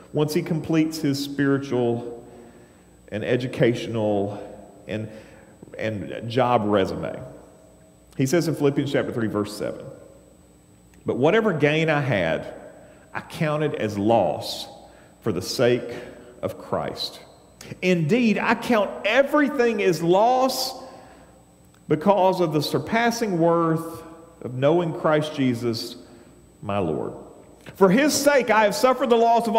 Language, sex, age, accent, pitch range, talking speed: English, male, 40-59, American, 120-195 Hz, 120 wpm